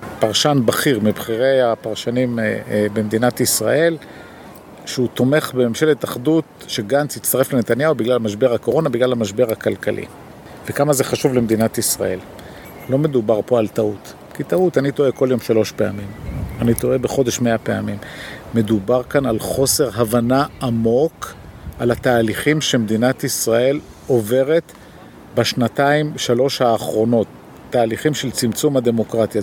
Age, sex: 50-69, male